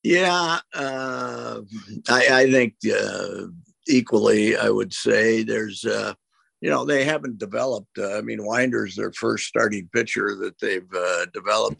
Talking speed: 145 wpm